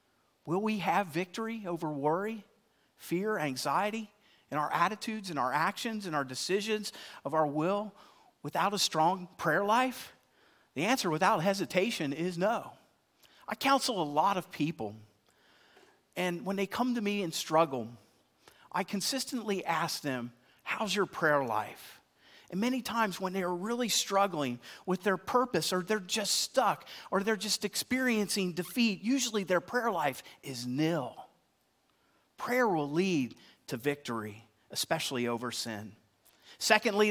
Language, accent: English, American